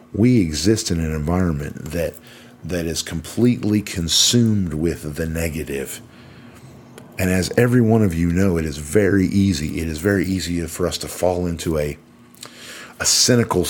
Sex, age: male, 50-69